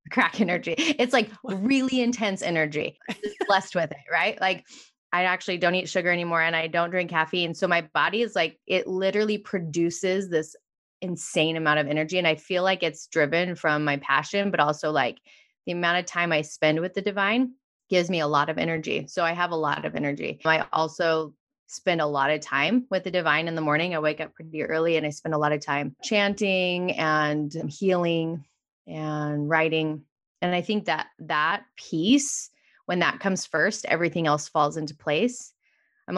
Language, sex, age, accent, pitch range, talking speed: English, female, 20-39, American, 155-190 Hz, 195 wpm